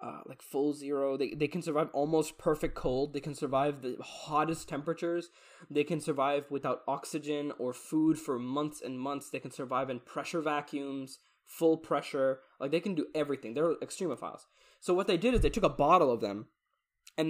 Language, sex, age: English, male, 10-29